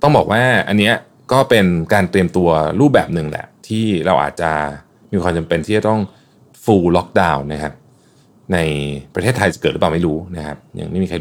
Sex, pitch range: male, 80-105 Hz